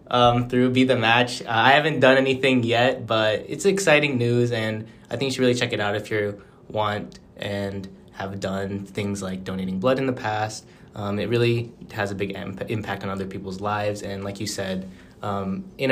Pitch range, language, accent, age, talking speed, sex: 100-115 Hz, English, American, 20-39, 205 wpm, male